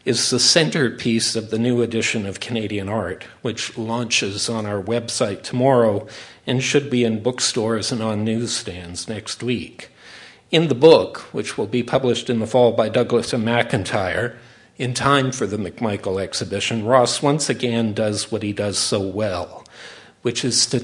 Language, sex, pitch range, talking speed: English, male, 110-130 Hz, 165 wpm